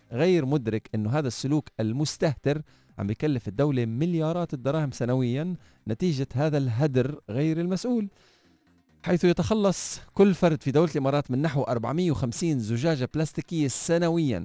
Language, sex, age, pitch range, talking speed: Arabic, male, 40-59, 105-145 Hz, 125 wpm